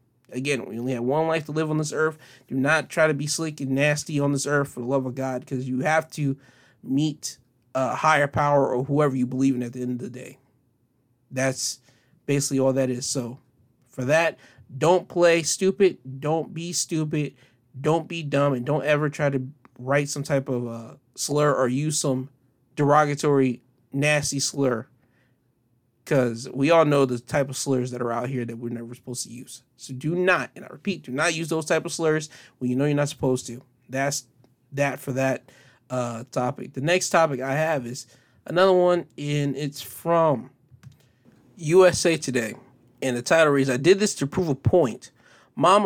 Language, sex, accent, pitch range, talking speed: English, male, American, 125-155 Hz, 195 wpm